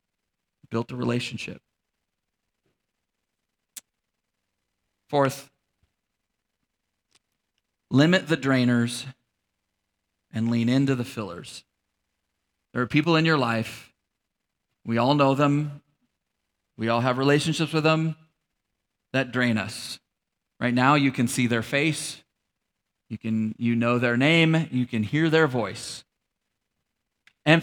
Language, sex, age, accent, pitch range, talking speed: English, male, 40-59, American, 135-200 Hz, 110 wpm